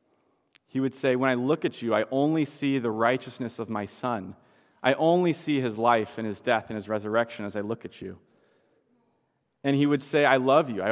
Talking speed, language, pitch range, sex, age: 215 wpm, English, 110-135 Hz, male, 30-49